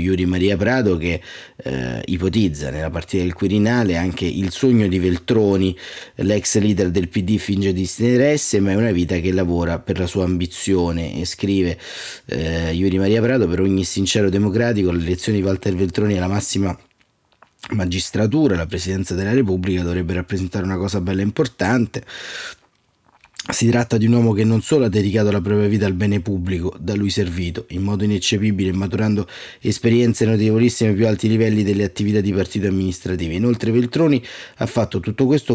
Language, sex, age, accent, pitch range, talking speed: Italian, male, 30-49, native, 95-115 Hz, 165 wpm